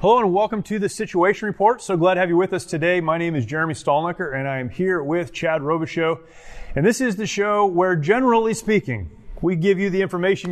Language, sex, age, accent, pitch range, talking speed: English, male, 30-49, American, 150-185 Hz, 230 wpm